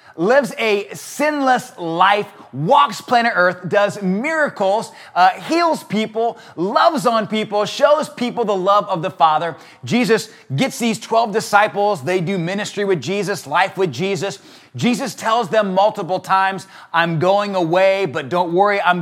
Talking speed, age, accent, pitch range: 150 wpm, 30-49, American, 185-215 Hz